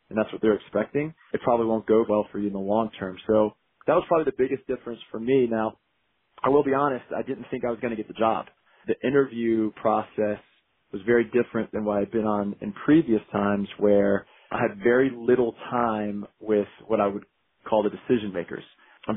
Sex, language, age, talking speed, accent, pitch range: male, English, 30-49, 215 wpm, American, 105-120 Hz